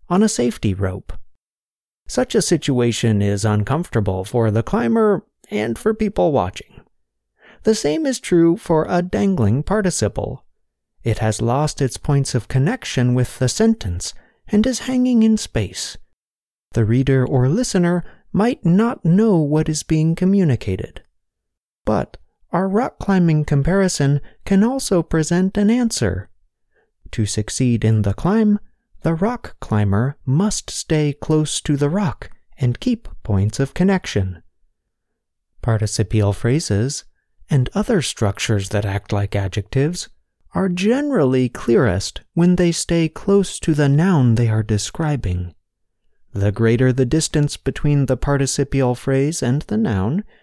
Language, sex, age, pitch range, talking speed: English, male, 30-49, 110-185 Hz, 135 wpm